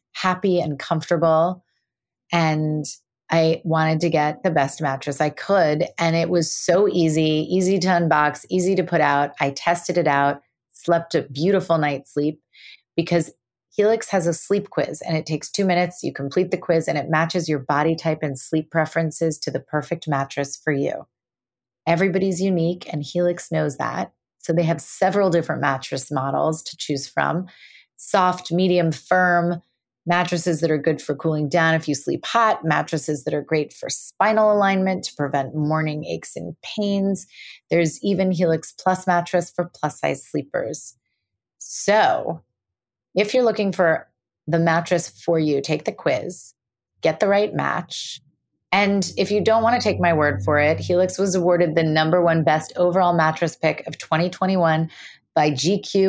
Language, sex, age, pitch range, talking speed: English, female, 30-49, 150-180 Hz, 170 wpm